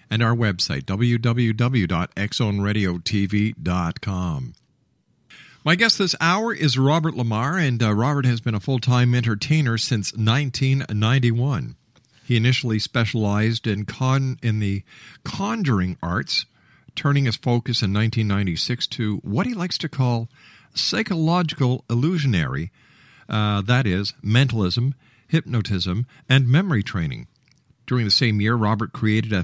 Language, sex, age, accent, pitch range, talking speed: English, male, 50-69, American, 110-140 Hz, 120 wpm